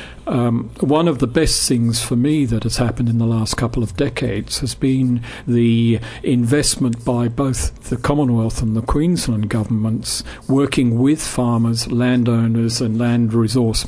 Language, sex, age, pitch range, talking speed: English, male, 50-69, 115-130 Hz, 155 wpm